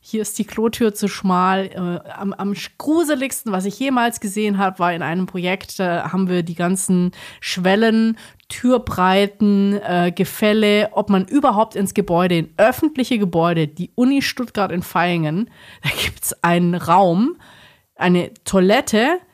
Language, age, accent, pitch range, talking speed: German, 30-49, German, 175-225 Hz, 145 wpm